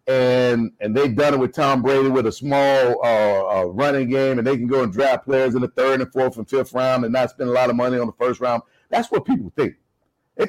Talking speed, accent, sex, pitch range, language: 265 wpm, American, male, 135-220 Hz, English